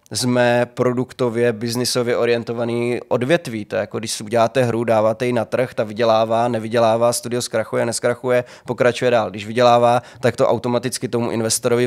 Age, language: 20-39, Czech